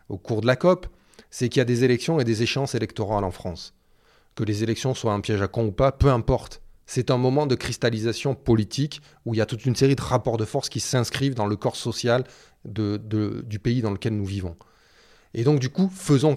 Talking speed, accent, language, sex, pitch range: 240 wpm, French, French, male, 115-150 Hz